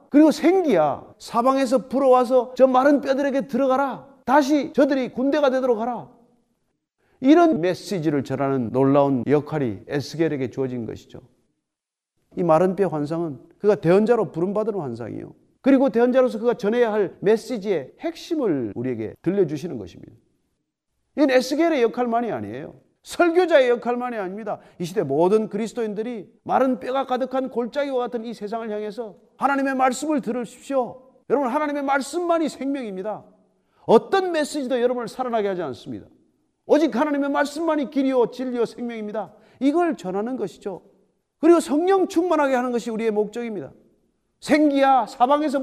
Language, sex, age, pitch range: Korean, male, 40-59, 205-280 Hz